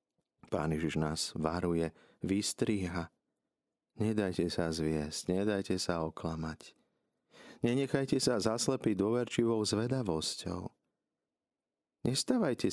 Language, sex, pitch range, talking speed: Slovak, male, 80-100 Hz, 80 wpm